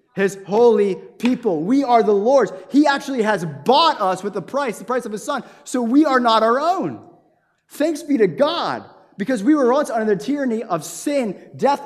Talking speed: 200 wpm